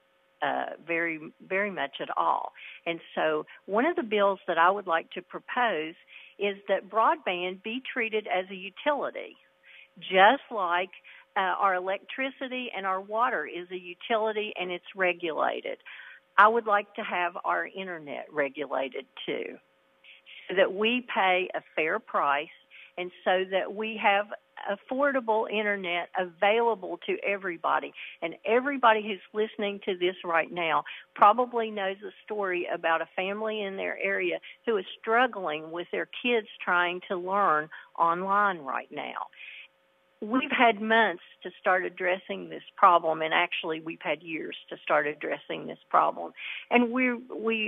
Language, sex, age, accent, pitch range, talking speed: English, female, 50-69, American, 180-225 Hz, 145 wpm